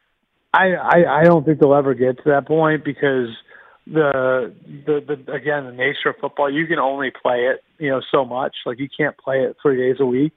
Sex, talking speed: male, 220 wpm